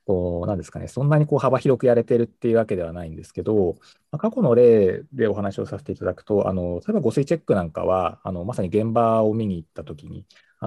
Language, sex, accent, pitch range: Japanese, male, native, 90-135 Hz